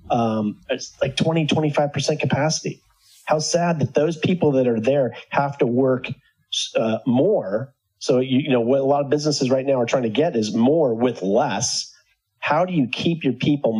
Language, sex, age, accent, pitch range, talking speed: English, male, 30-49, American, 115-150 Hz, 185 wpm